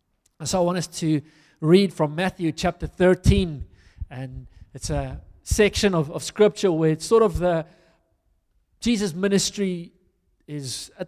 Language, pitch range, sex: English, 160-200 Hz, male